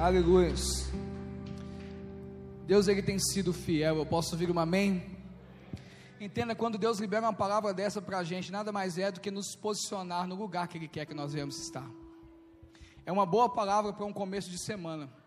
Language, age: Portuguese, 20-39